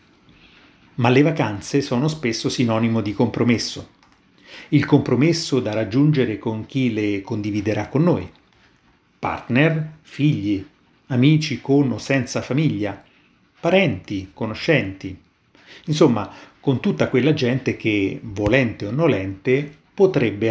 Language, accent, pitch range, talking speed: Italian, native, 115-145 Hz, 110 wpm